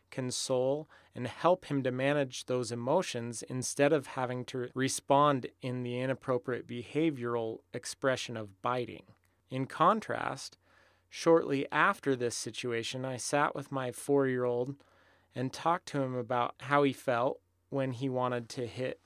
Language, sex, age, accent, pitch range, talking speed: English, male, 30-49, American, 120-145 Hz, 145 wpm